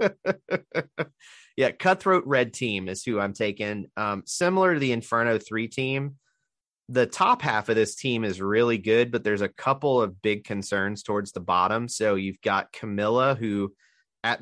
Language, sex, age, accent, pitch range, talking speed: English, male, 30-49, American, 100-135 Hz, 165 wpm